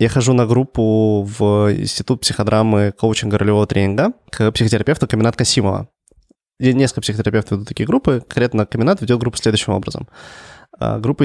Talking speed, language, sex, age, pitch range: 145 wpm, Russian, male, 20-39, 105-130 Hz